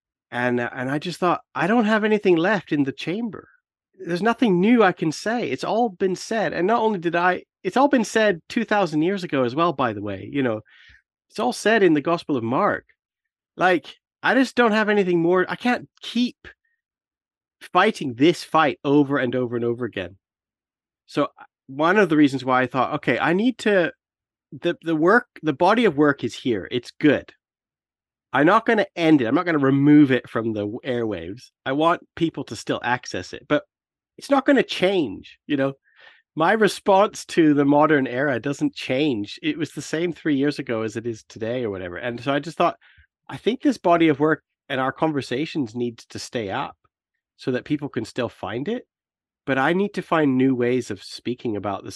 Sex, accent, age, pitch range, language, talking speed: male, American, 40-59, 125-185 Hz, English, 205 wpm